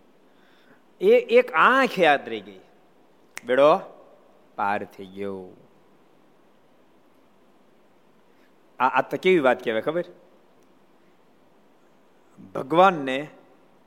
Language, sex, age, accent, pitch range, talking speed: Gujarati, male, 50-69, native, 115-175 Hz, 65 wpm